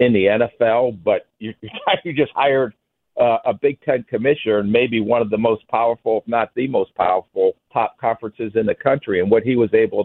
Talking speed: 210 wpm